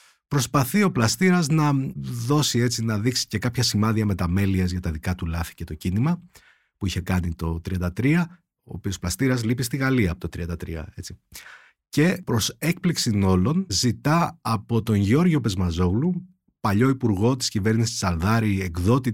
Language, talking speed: Greek, 160 wpm